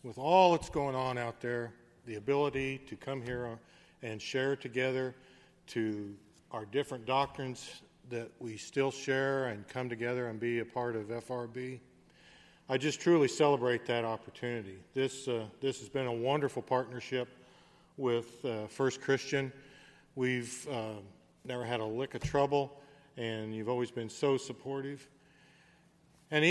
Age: 40-59